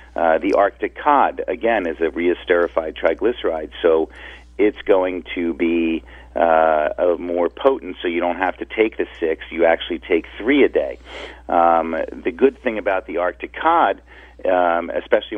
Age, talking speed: 50-69, 165 wpm